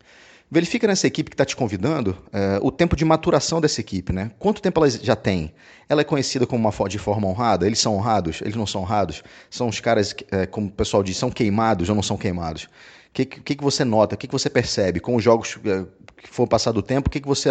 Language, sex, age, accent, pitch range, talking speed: Portuguese, male, 30-49, Brazilian, 105-145 Hz, 255 wpm